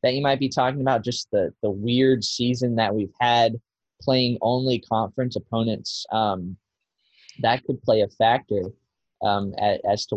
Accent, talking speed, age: American, 160 wpm, 20-39